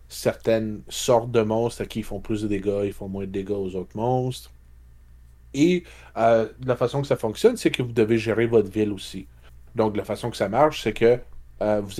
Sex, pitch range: male, 95-120 Hz